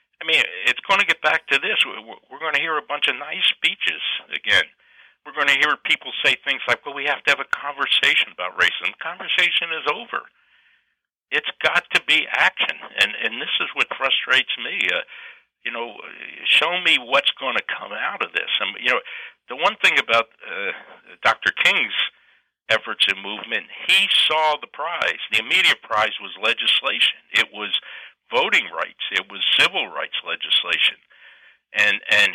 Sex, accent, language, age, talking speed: male, American, English, 60-79, 175 wpm